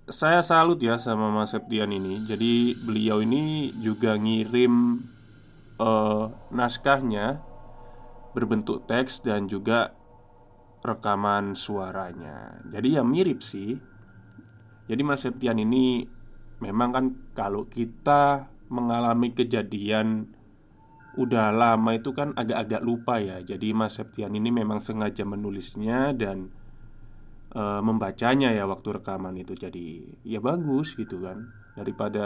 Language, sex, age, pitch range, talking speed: Indonesian, male, 20-39, 105-125 Hz, 110 wpm